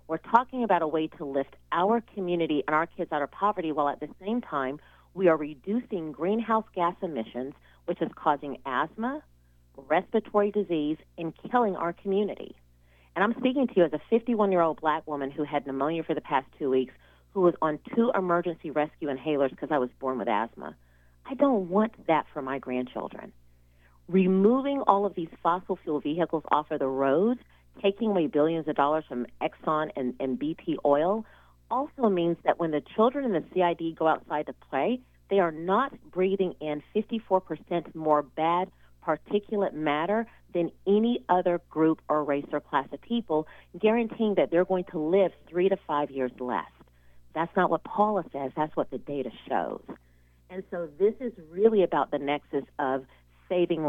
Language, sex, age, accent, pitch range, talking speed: English, female, 40-59, American, 145-195 Hz, 180 wpm